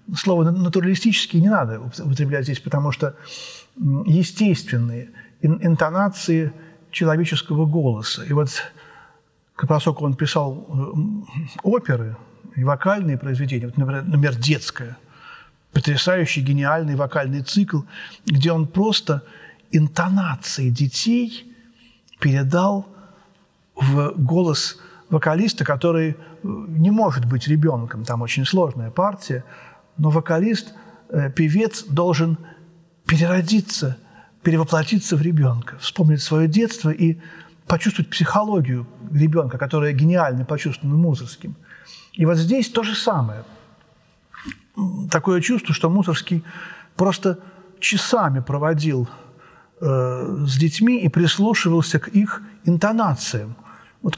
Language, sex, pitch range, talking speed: Russian, male, 145-185 Hz, 95 wpm